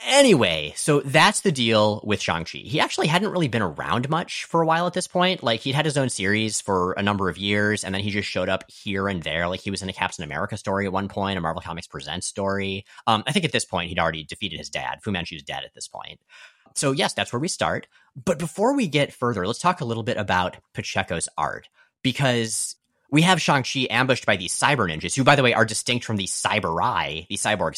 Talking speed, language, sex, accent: 240 wpm, English, male, American